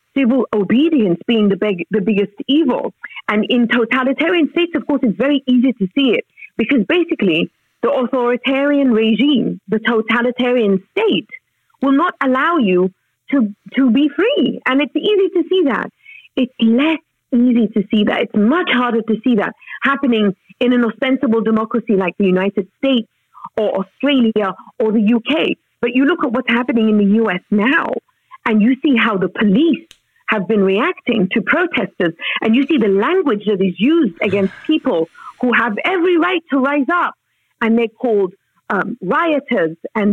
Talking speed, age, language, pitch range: 165 wpm, 40-59, English, 210-280 Hz